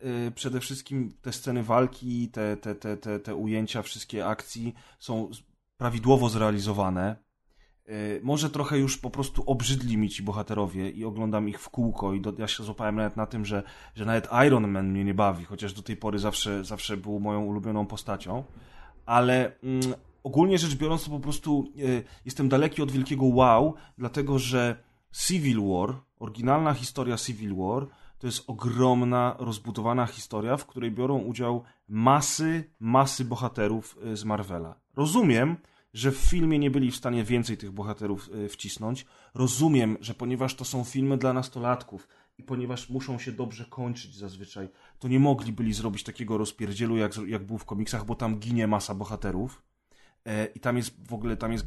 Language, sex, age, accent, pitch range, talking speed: Polish, male, 30-49, native, 105-130 Hz, 165 wpm